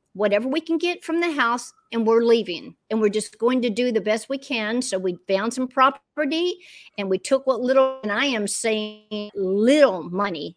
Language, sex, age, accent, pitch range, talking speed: English, female, 50-69, American, 205-255 Hz, 205 wpm